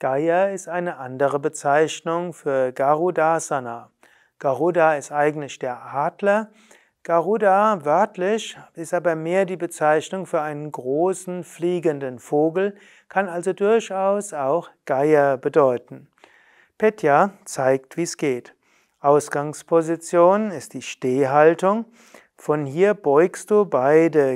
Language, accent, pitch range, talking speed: German, German, 150-195 Hz, 110 wpm